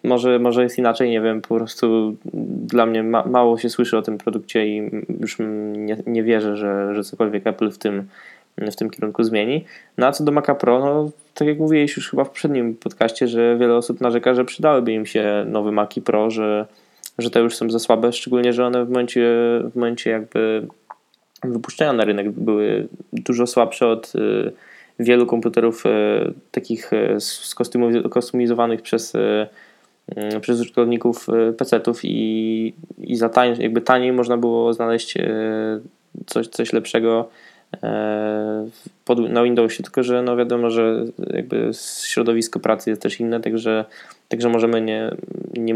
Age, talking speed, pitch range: 10-29, 160 wpm, 110-120 Hz